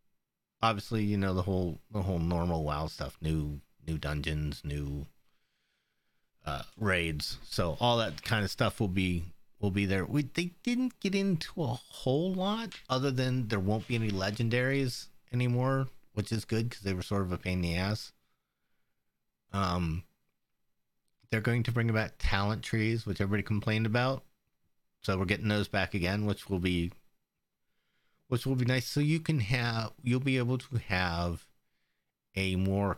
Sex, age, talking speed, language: male, 30-49, 165 wpm, English